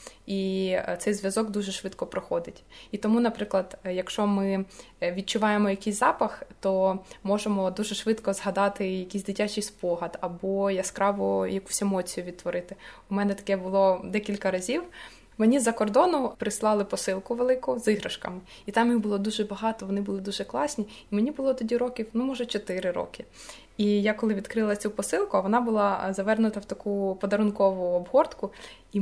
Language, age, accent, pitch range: Ukrainian, 20-39, native, 195-220 Hz